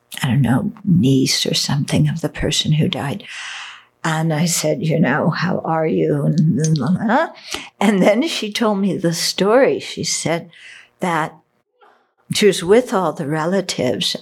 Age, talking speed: 60-79, 150 wpm